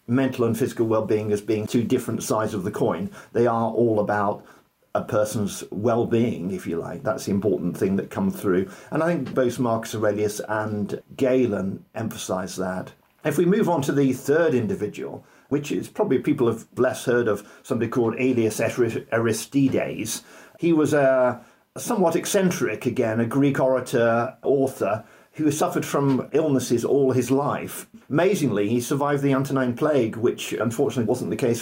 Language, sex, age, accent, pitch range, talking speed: English, male, 50-69, British, 110-140 Hz, 165 wpm